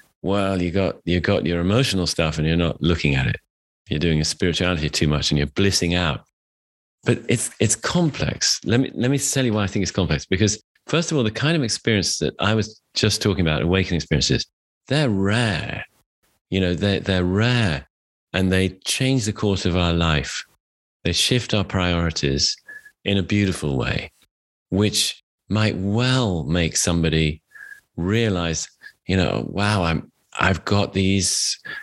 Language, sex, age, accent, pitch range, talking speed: English, male, 30-49, British, 85-110 Hz, 175 wpm